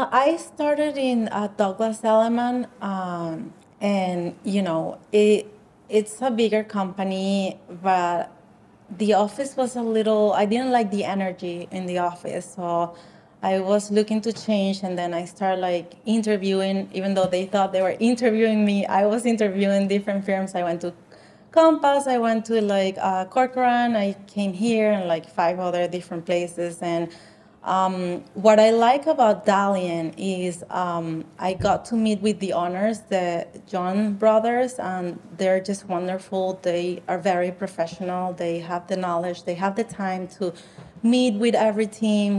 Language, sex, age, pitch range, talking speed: English, female, 30-49, 180-215 Hz, 160 wpm